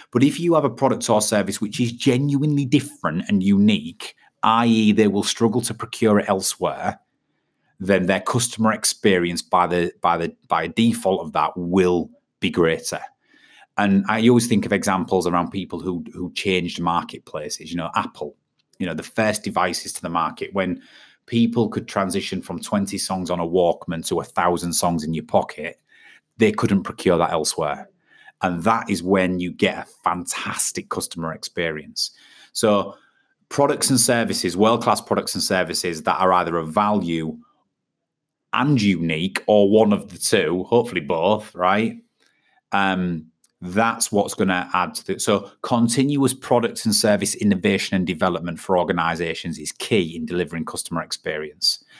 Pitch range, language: 90-120 Hz, English